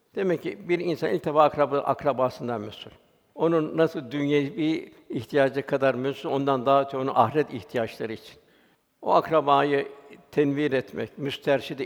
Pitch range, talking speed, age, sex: 140-170 Hz, 130 wpm, 60-79, male